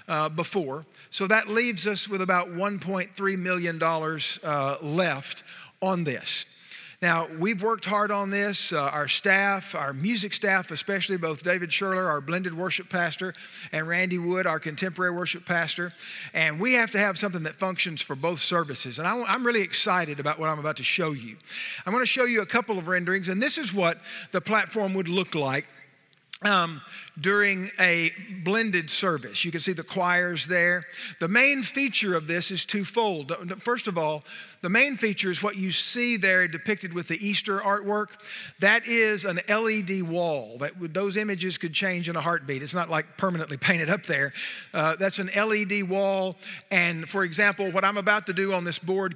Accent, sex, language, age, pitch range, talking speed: American, male, English, 50-69, 165-200 Hz, 185 wpm